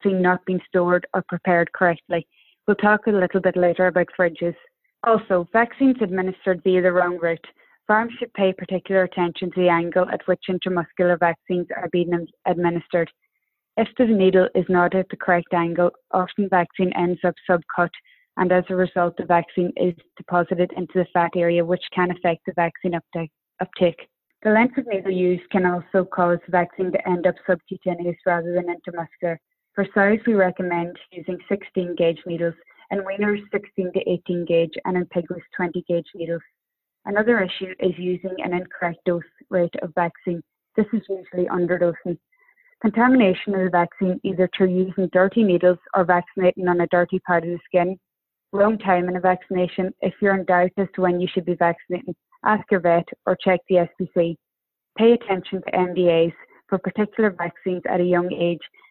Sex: female